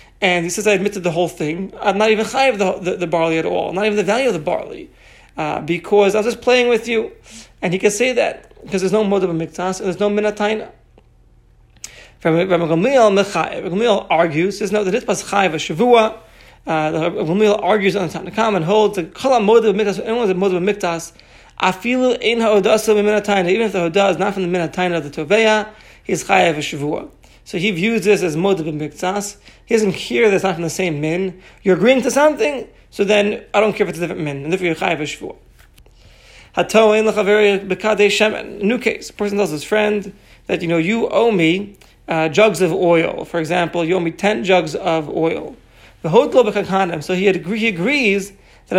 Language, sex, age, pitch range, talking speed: English, male, 40-59, 170-215 Hz, 190 wpm